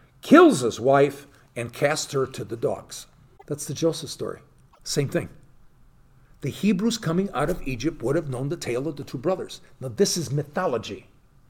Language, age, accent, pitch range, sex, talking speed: English, 50-69, American, 135-200 Hz, male, 175 wpm